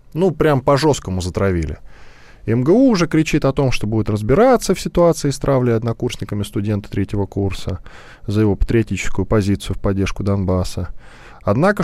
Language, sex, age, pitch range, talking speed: Russian, male, 10-29, 95-145 Hz, 145 wpm